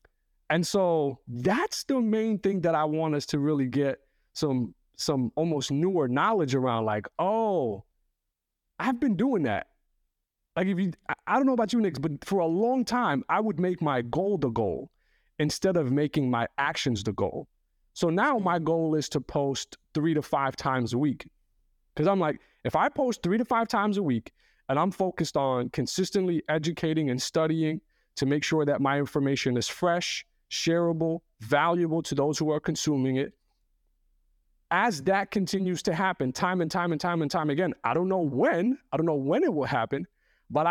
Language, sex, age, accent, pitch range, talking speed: English, male, 30-49, American, 135-180 Hz, 185 wpm